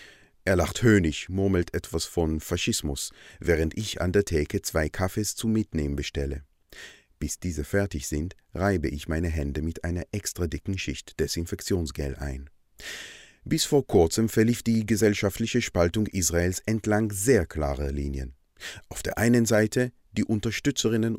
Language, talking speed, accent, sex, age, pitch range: German, 140 wpm, German, male, 30-49, 80-110 Hz